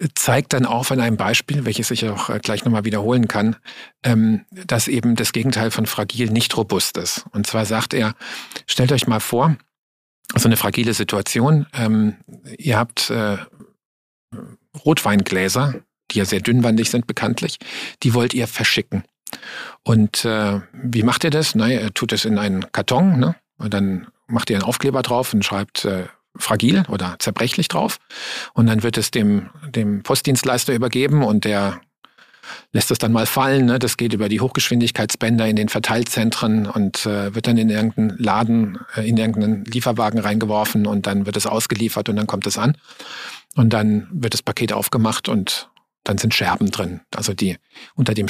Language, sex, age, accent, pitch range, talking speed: German, male, 50-69, German, 105-120 Hz, 160 wpm